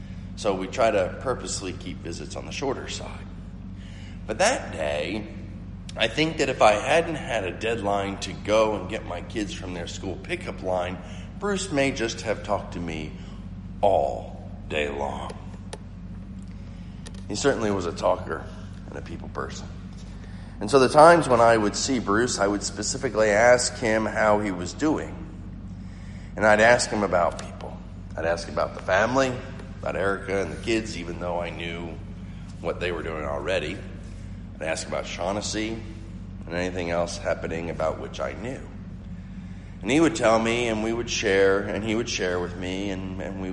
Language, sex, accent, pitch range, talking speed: English, male, American, 90-105 Hz, 175 wpm